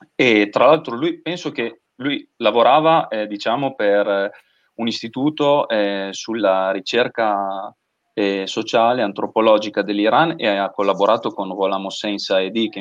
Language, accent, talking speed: Italian, native, 135 wpm